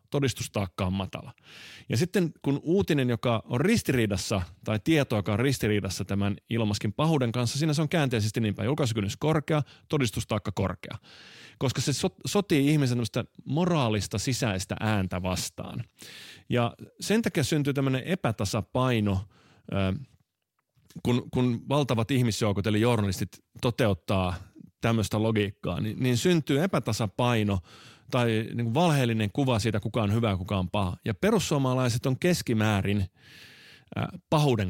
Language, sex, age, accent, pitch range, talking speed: Finnish, male, 30-49, native, 105-145 Hz, 125 wpm